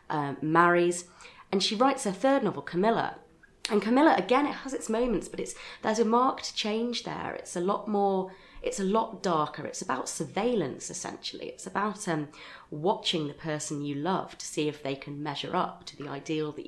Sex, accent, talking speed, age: female, British, 195 wpm, 30-49